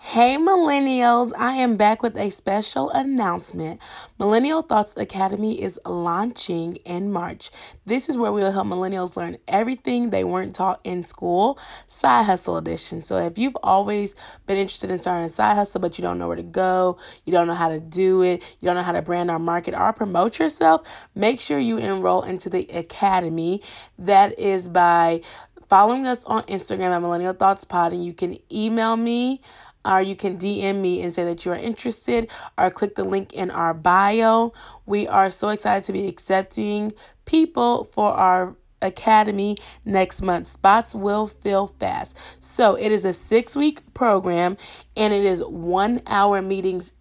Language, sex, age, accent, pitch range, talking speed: English, female, 20-39, American, 180-215 Hz, 175 wpm